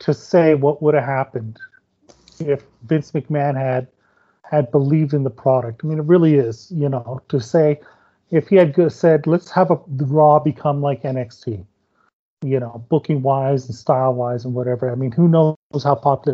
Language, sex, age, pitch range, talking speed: English, male, 40-59, 135-165 Hz, 175 wpm